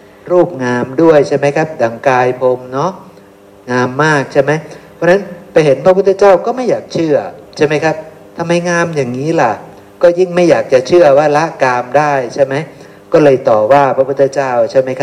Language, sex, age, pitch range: Thai, male, 60-79, 125-175 Hz